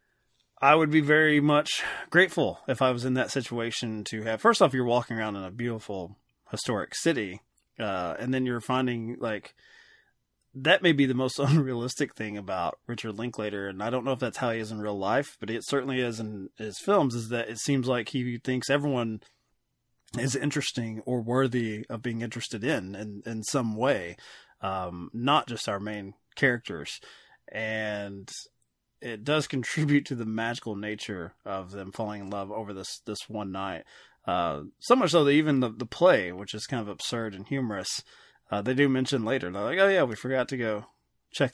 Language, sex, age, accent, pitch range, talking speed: English, male, 20-39, American, 105-135 Hz, 190 wpm